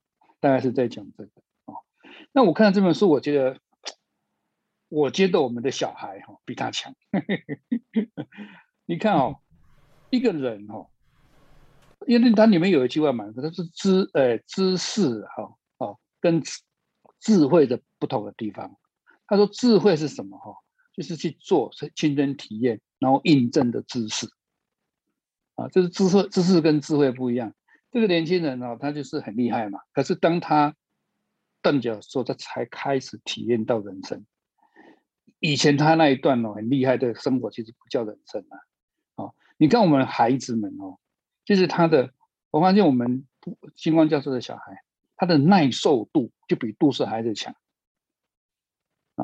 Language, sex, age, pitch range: Chinese, male, 60-79, 130-185 Hz